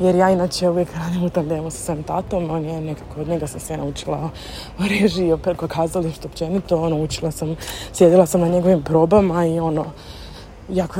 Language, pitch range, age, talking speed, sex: Croatian, 165-205 Hz, 20-39, 175 wpm, female